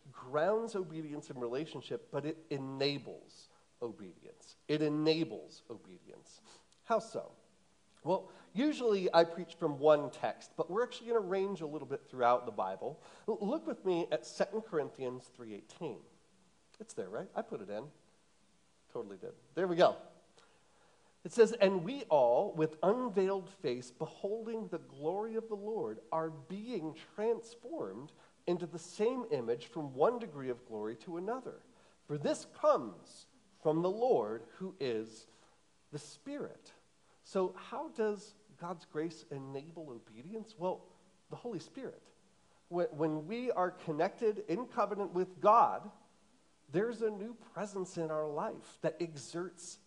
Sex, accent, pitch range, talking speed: male, American, 155-220 Hz, 140 wpm